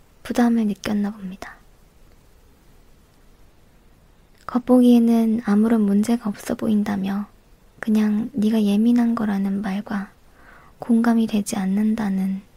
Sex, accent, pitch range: male, native, 205-240 Hz